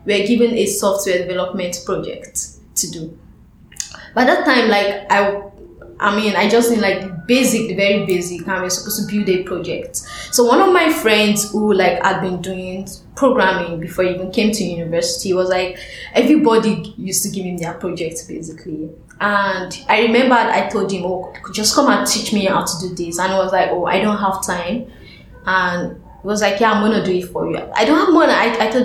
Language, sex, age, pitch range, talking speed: English, female, 10-29, 180-220 Hz, 210 wpm